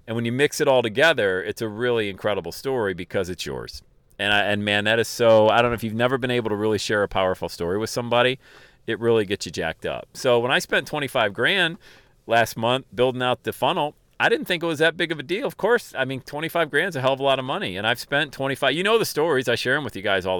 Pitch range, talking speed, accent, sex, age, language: 110-135 Hz, 280 wpm, American, male, 40-59, English